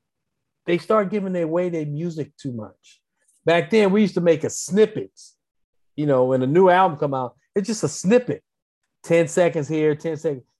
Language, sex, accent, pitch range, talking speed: English, male, American, 135-205 Hz, 185 wpm